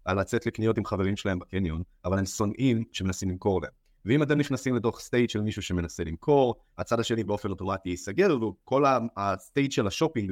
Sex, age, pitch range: male, 30-49, 95-115 Hz